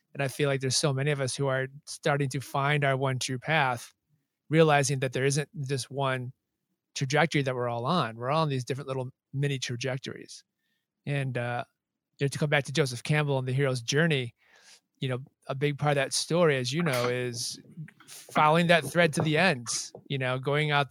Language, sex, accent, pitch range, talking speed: English, male, American, 130-150 Hz, 205 wpm